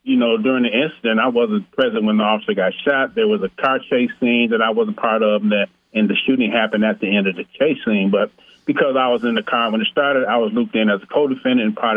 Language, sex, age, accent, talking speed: English, male, 40-59, American, 270 wpm